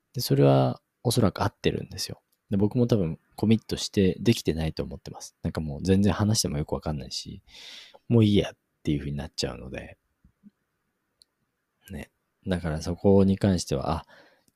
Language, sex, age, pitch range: Japanese, male, 20-39, 80-100 Hz